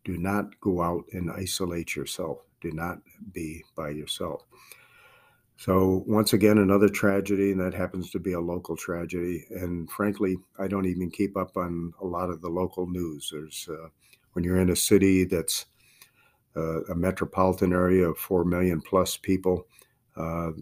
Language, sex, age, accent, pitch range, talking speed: English, male, 50-69, American, 85-100 Hz, 165 wpm